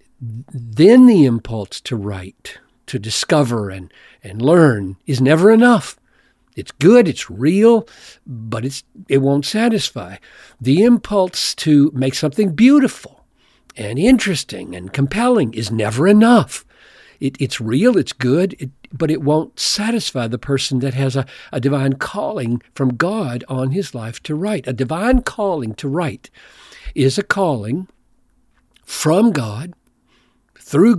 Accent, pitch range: American, 120-185 Hz